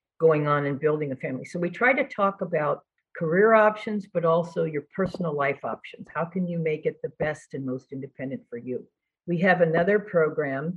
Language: English